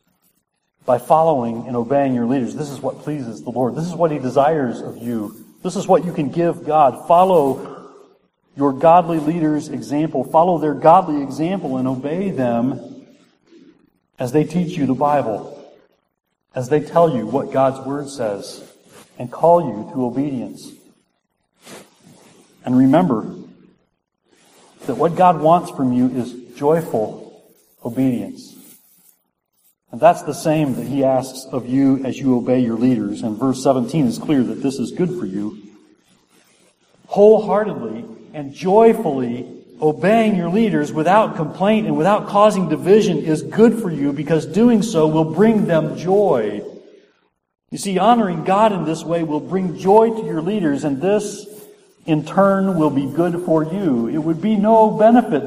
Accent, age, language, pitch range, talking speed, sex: American, 40-59, English, 135-190 Hz, 155 wpm, male